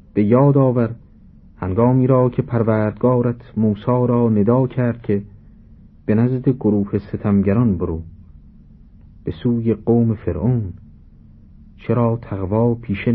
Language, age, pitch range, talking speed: Persian, 50-69, 95-120 Hz, 110 wpm